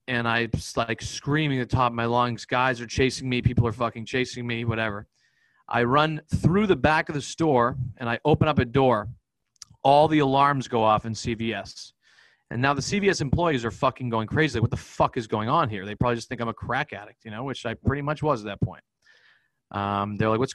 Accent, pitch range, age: American, 115-140 Hz, 40-59